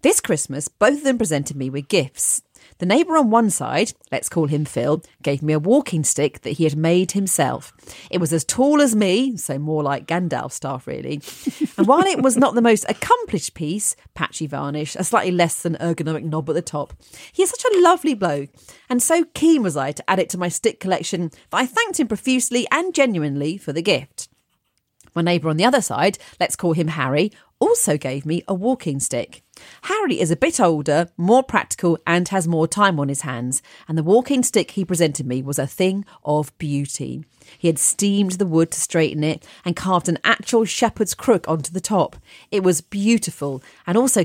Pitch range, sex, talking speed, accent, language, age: 150-220 Hz, female, 205 wpm, British, English, 40-59